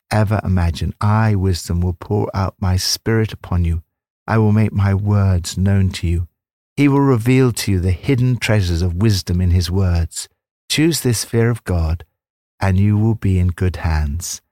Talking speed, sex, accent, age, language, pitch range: 180 wpm, male, British, 60-79, English, 85-115 Hz